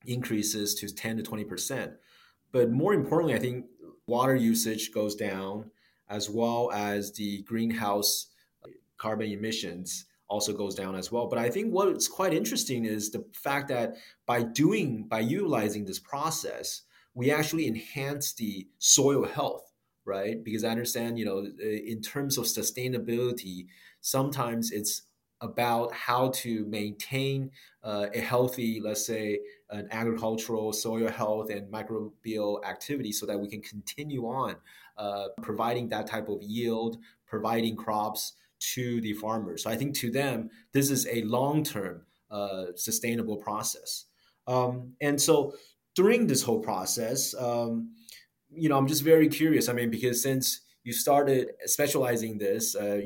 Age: 30-49